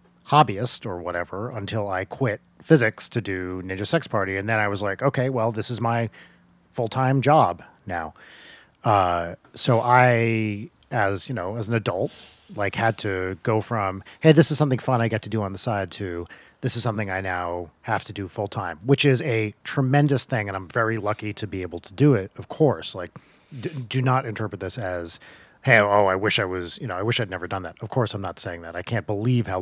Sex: male